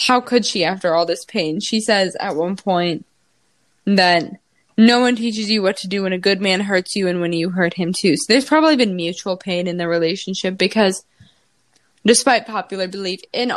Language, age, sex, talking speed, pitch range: English, 20-39, female, 205 wpm, 175-225 Hz